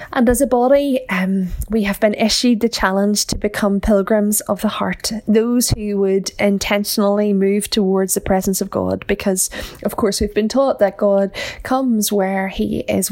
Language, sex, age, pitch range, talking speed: English, female, 10-29, 190-230 Hz, 180 wpm